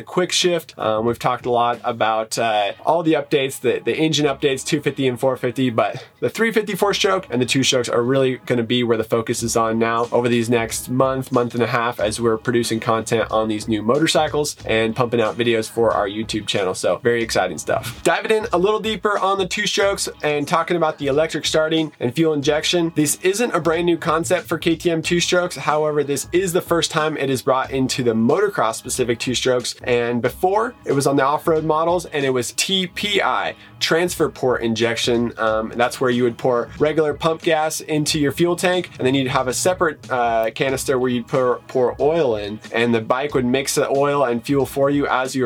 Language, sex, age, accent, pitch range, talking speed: English, male, 20-39, American, 120-155 Hz, 220 wpm